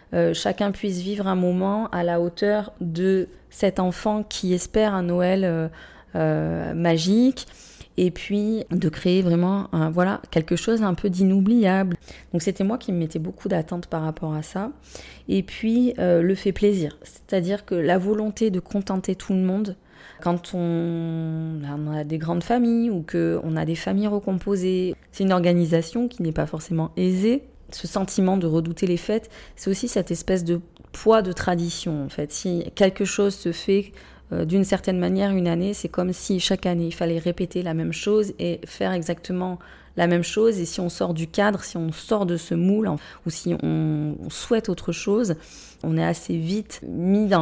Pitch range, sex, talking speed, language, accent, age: 170-200 Hz, female, 185 wpm, French, French, 20-39